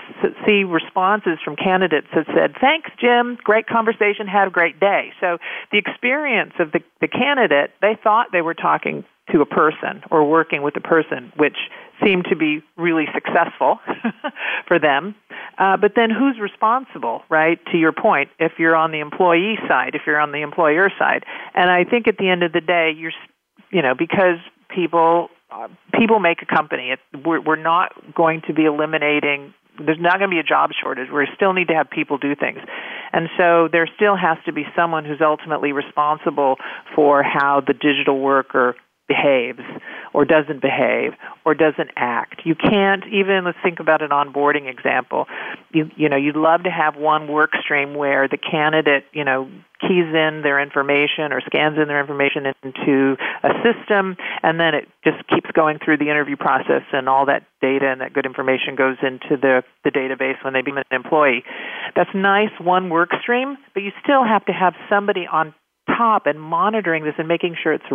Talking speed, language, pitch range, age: 190 wpm, English, 145-190 Hz, 50-69